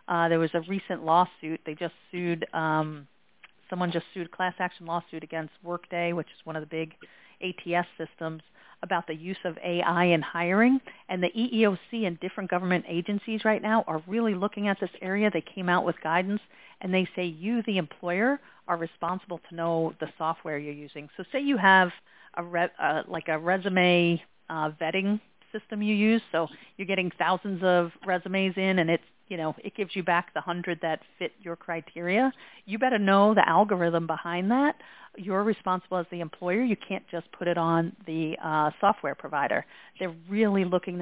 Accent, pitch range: American, 165-195 Hz